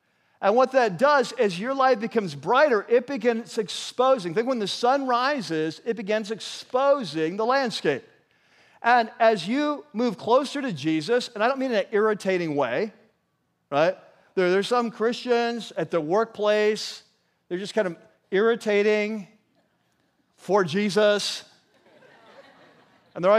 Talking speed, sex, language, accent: 140 wpm, male, English, American